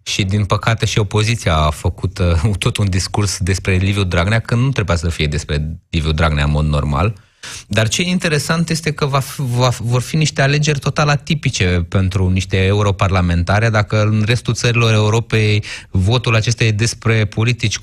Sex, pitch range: male, 95-120 Hz